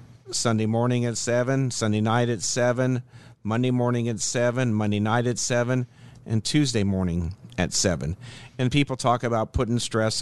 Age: 50-69